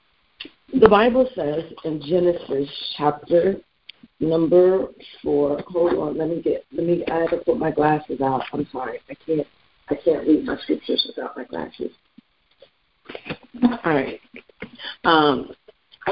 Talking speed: 130 wpm